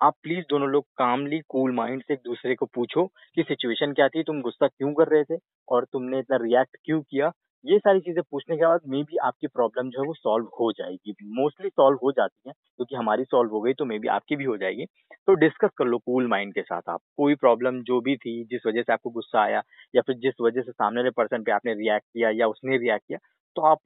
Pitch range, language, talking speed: 125-165 Hz, Hindi, 255 wpm